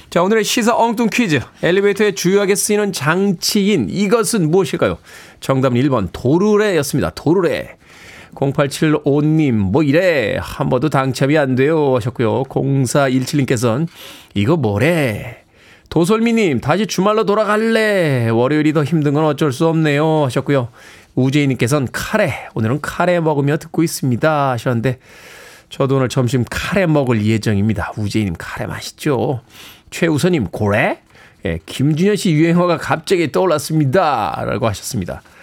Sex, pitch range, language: male, 125-165 Hz, Korean